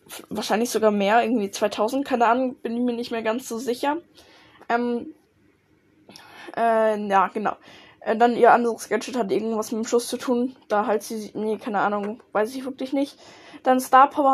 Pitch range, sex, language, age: 220-260 Hz, female, German, 10-29